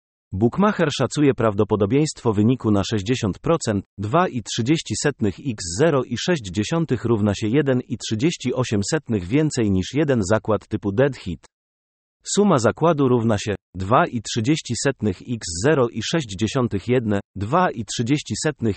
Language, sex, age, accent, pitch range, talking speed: Polish, male, 40-59, native, 105-140 Hz, 75 wpm